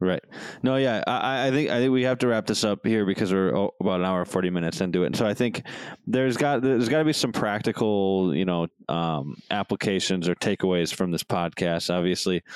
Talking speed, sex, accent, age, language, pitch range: 215 wpm, male, American, 20-39, English, 90-110 Hz